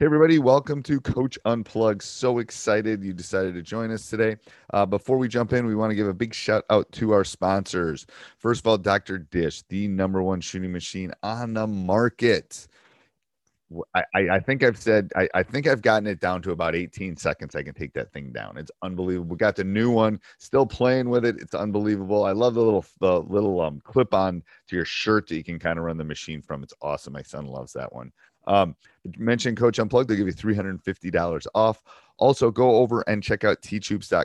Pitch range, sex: 85-110 Hz, male